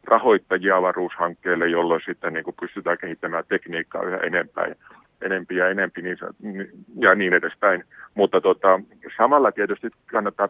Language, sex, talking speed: Finnish, male, 120 wpm